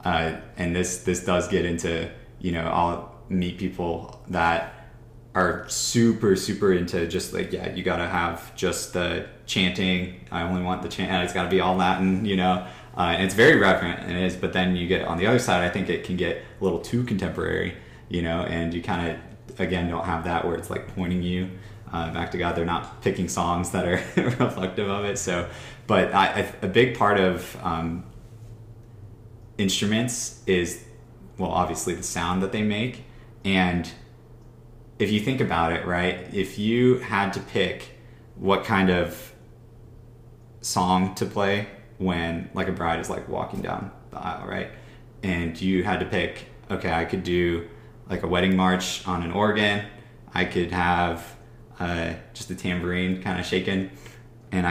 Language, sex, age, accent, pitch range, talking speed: English, male, 20-39, American, 90-115 Hz, 180 wpm